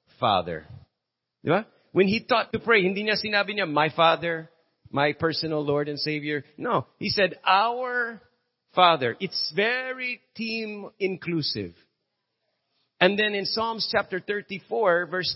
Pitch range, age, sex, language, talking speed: 165-240 Hz, 40-59, male, English, 135 wpm